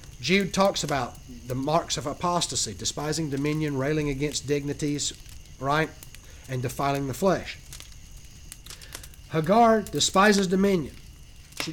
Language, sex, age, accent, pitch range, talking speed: English, male, 60-79, American, 135-215 Hz, 105 wpm